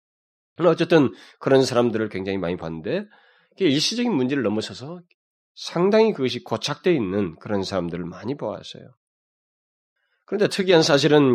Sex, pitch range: male, 110-165 Hz